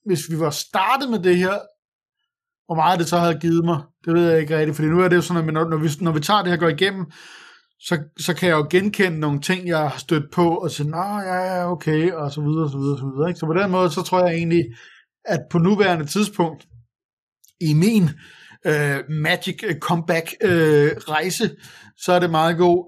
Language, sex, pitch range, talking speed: Danish, male, 155-185 Hz, 225 wpm